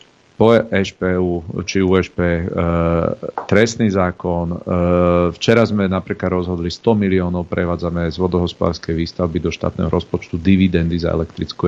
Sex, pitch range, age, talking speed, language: male, 85-100 Hz, 40-59, 125 wpm, Slovak